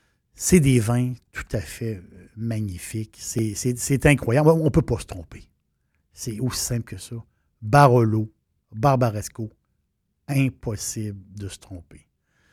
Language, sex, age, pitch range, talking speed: French, male, 60-79, 115-150 Hz, 135 wpm